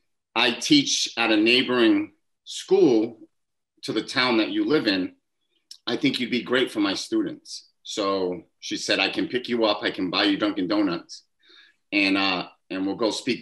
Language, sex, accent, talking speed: English, male, American, 185 wpm